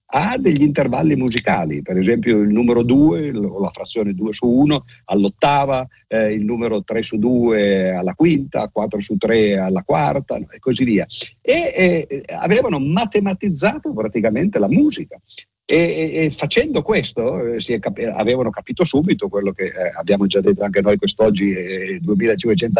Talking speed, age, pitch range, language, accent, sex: 145 wpm, 50-69, 100-155 Hz, Italian, native, male